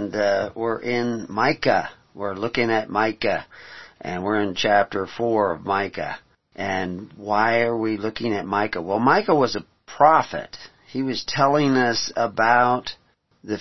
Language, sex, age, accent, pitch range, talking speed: English, male, 50-69, American, 95-130 Hz, 145 wpm